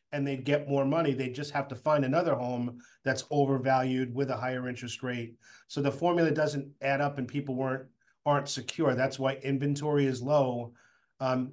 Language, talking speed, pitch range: English, 185 wpm, 130-150 Hz